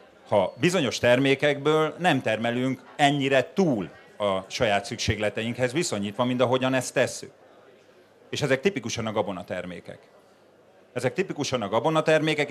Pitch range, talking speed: 105-135 Hz, 115 wpm